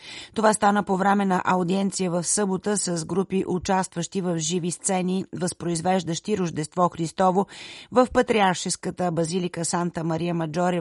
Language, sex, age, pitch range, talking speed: Bulgarian, female, 30-49, 165-190 Hz, 130 wpm